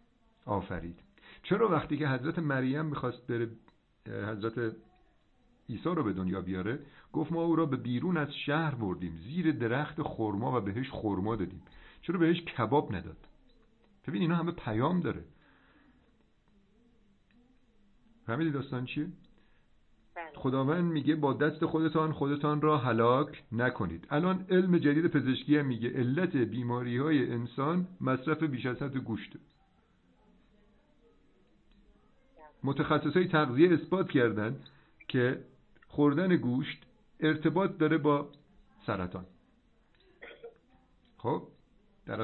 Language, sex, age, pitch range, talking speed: Persian, male, 50-69, 120-165 Hz, 110 wpm